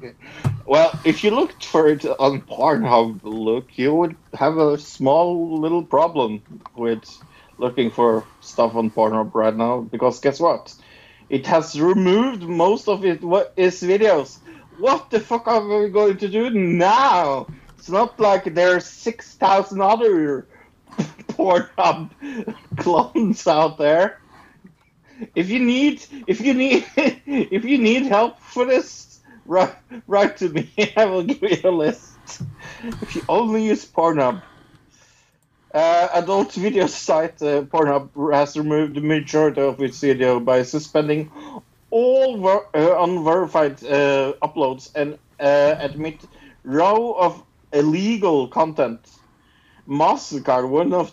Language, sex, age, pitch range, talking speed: English, male, 50-69, 135-205 Hz, 135 wpm